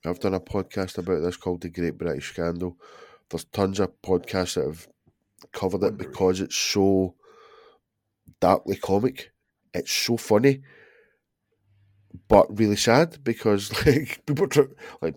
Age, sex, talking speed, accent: 20-39, male, 135 wpm, British